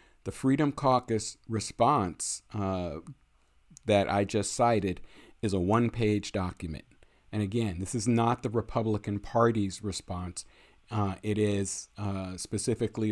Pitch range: 95-115 Hz